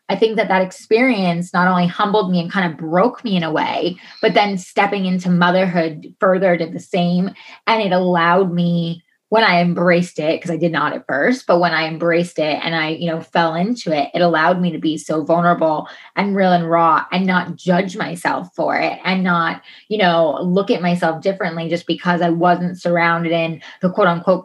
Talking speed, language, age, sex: 210 wpm, English, 20-39, female